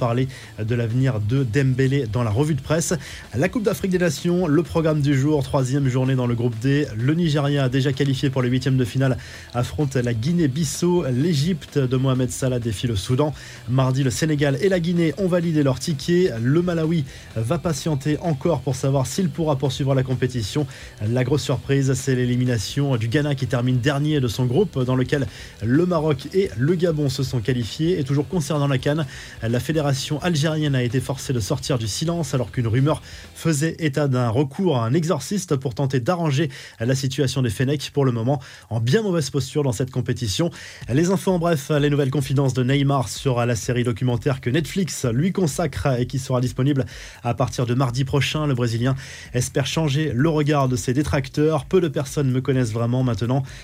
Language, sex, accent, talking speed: French, male, French, 195 wpm